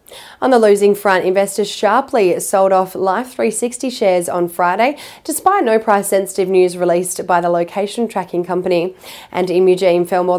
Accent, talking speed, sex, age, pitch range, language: Australian, 150 wpm, female, 20-39, 180-220 Hz, English